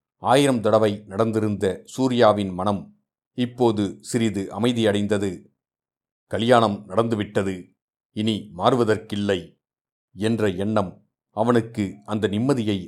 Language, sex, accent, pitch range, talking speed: Tamil, male, native, 100-120 Hz, 80 wpm